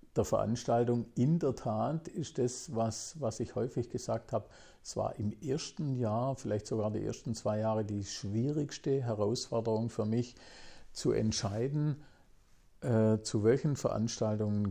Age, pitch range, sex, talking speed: 50-69, 105-120 Hz, male, 140 wpm